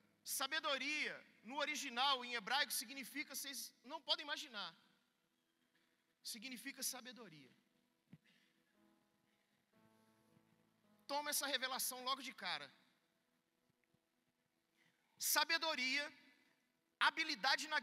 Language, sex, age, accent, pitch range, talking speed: Gujarati, male, 40-59, Brazilian, 235-295 Hz, 70 wpm